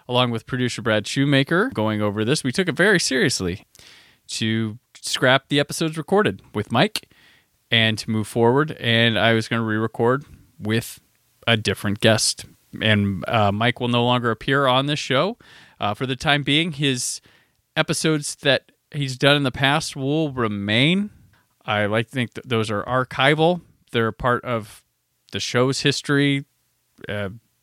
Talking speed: 165 wpm